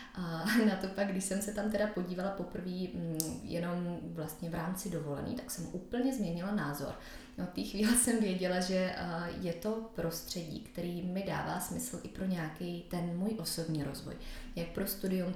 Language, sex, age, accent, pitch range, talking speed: Czech, female, 20-39, native, 175-205 Hz, 170 wpm